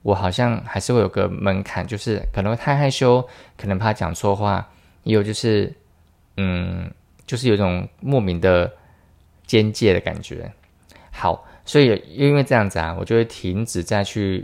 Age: 20-39